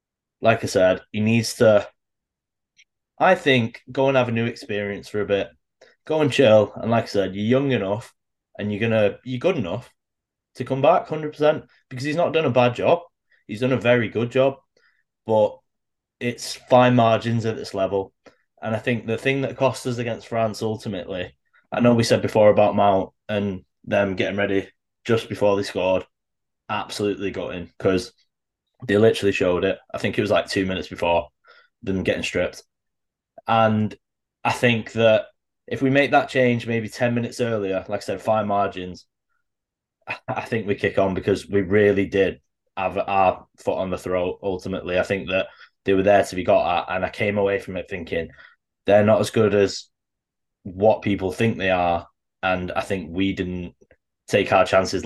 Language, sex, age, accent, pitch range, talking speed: English, male, 20-39, British, 95-120 Hz, 185 wpm